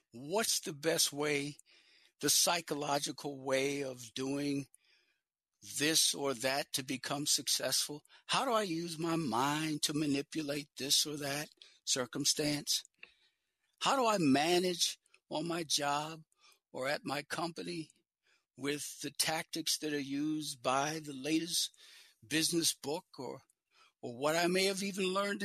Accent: American